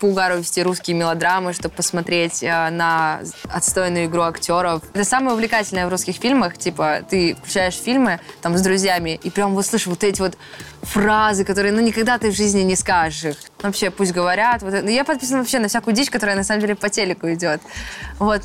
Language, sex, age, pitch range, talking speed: Russian, female, 20-39, 170-205 Hz, 190 wpm